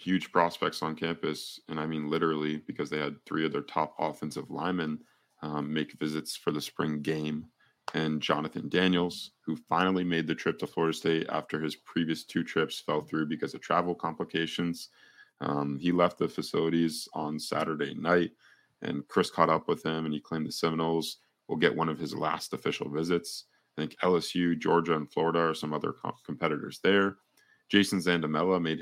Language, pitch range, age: English, 75-85 Hz, 30-49